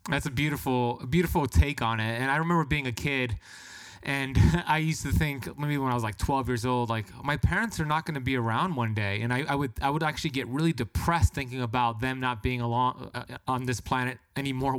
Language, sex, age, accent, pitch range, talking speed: English, male, 30-49, American, 125-150 Hz, 235 wpm